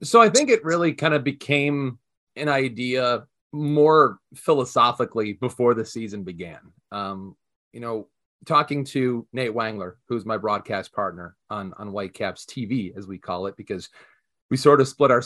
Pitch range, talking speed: 110-145 Hz, 160 wpm